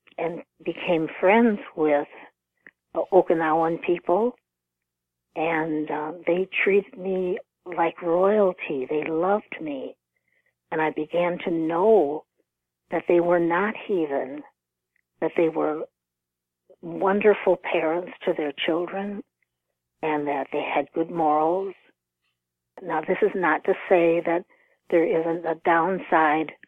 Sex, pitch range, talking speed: female, 150-190 Hz, 115 wpm